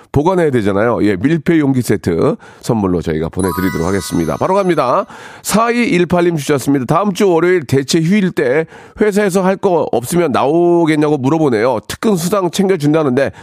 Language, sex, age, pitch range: Korean, male, 40-59, 115-185 Hz